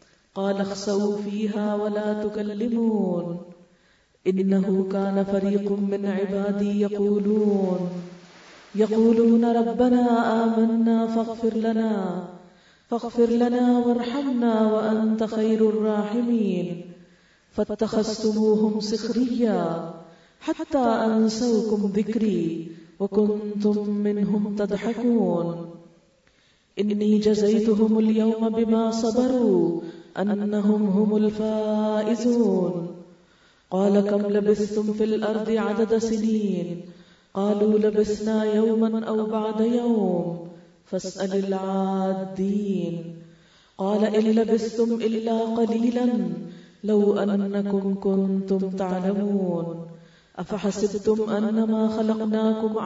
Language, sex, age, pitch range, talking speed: Urdu, female, 20-39, 195-225 Hz, 75 wpm